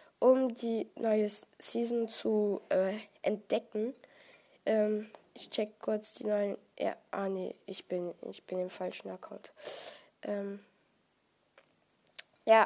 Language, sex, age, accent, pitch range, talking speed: German, female, 10-29, German, 195-245 Hz, 125 wpm